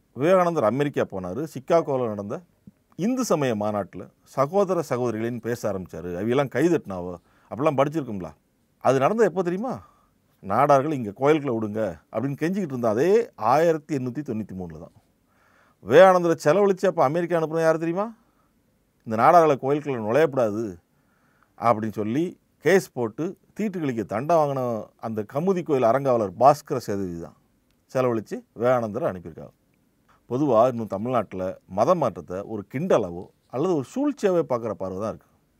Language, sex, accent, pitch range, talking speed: Tamil, male, native, 110-175 Hz, 125 wpm